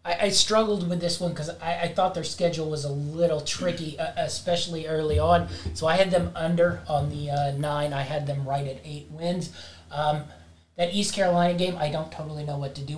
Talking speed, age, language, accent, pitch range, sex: 205 wpm, 30-49, English, American, 140-170 Hz, male